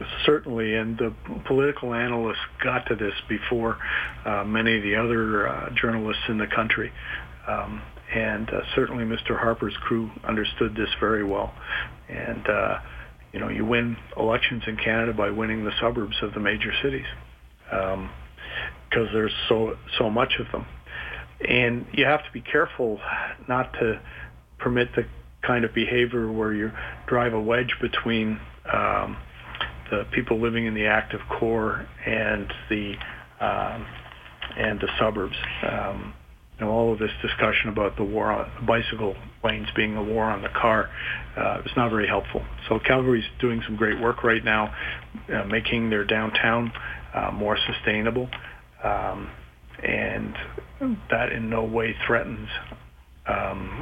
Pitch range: 100-115 Hz